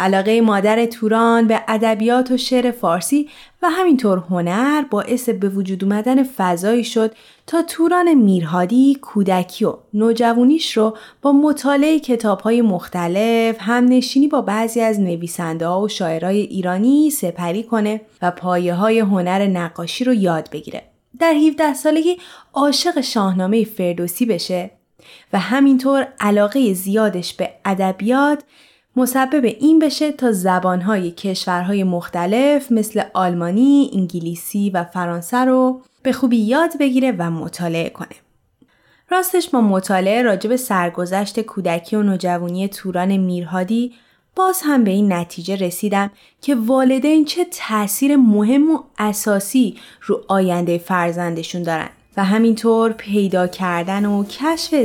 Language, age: Persian, 30-49